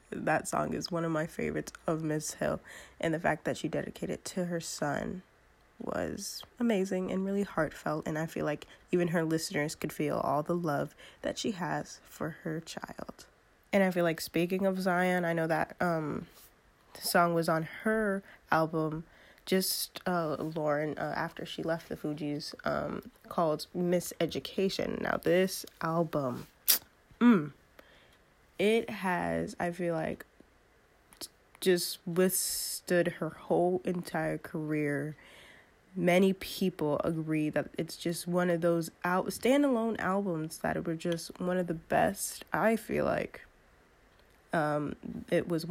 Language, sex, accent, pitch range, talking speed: English, female, American, 160-190 Hz, 150 wpm